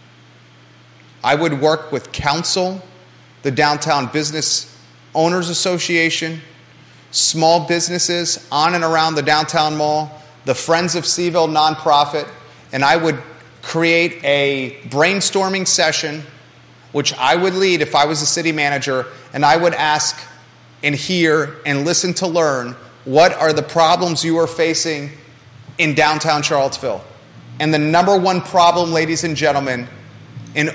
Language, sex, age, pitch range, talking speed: English, male, 30-49, 130-170 Hz, 135 wpm